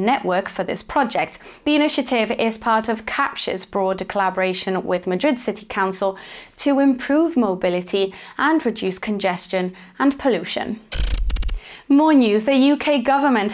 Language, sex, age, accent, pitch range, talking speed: English, female, 20-39, British, 195-265 Hz, 130 wpm